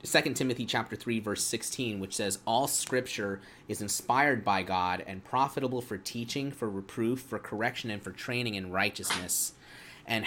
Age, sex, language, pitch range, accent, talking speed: 30-49, male, English, 100-130 Hz, American, 165 wpm